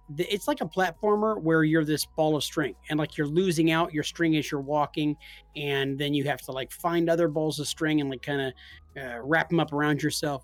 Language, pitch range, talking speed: English, 140-170 Hz, 230 wpm